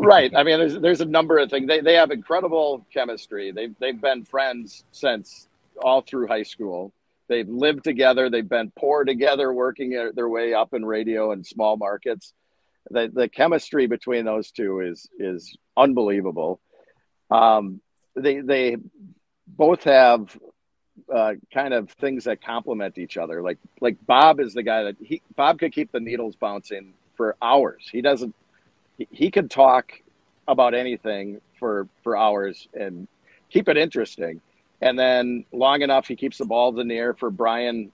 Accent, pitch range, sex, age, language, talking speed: American, 110-135 Hz, male, 50-69, English, 165 wpm